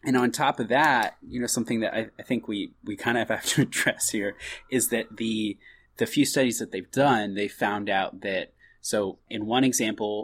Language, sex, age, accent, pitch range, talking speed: English, male, 20-39, American, 100-120 Hz, 225 wpm